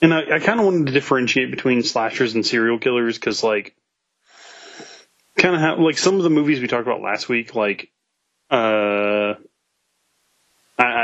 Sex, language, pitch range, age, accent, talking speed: male, English, 110-145 Hz, 30-49, American, 150 wpm